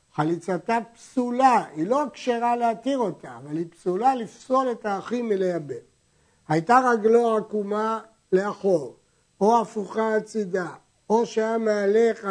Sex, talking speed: male, 130 wpm